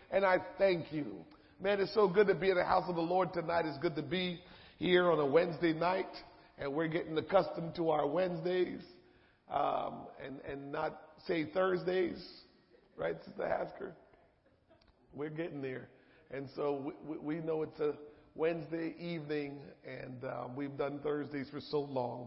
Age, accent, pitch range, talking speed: 40-59, American, 140-175 Hz, 165 wpm